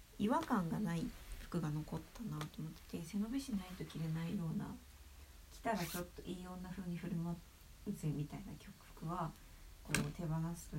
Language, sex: Japanese, female